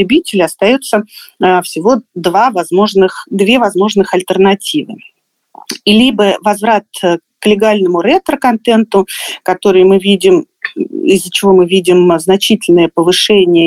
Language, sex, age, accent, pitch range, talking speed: Russian, female, 30-49, native, 185-250 Hz, 100 wpm